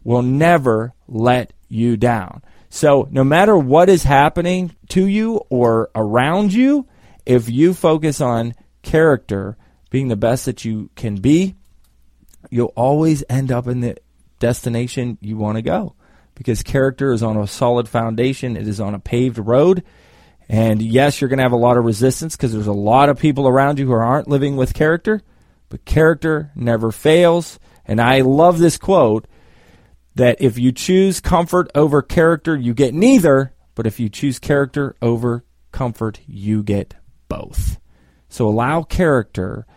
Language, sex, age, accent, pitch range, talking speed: English, male, 30-49, American, 110-145 Hz, 160 wpm